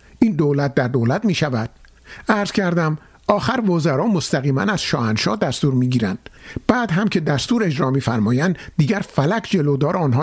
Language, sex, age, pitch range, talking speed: Persian, male, 50-69, 130-180 Hz, 155 wpm